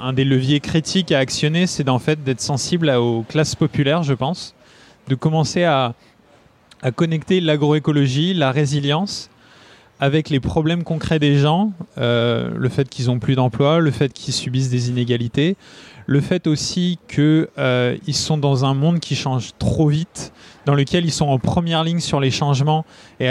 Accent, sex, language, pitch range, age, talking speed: French, male, French, 135-165 Hz, 20-39, 175 wpm